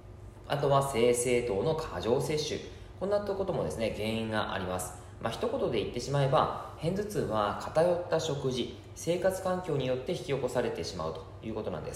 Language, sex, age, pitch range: Japanese, male, 20-39, 110-175 Hz